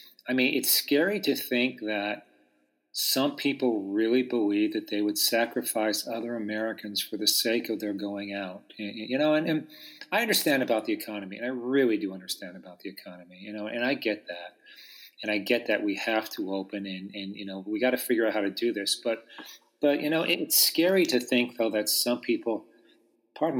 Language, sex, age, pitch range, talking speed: English, male, 40-59, 105-130 Hz, 205 wpm